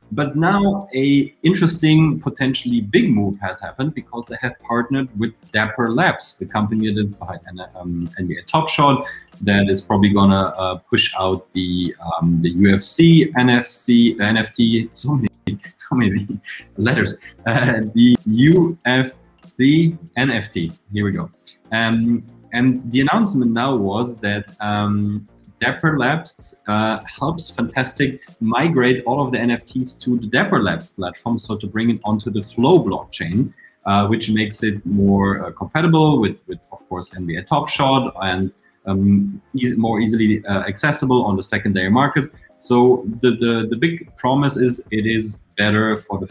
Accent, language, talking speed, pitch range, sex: German, English, 150 wpm, 100-130 Hz, male